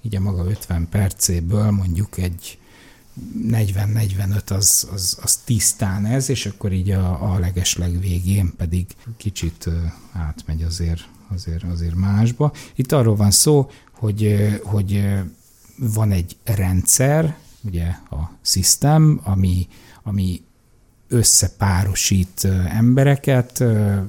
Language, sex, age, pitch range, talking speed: Hungarian, male, 60-79, 90-115 Hz, 105 wpm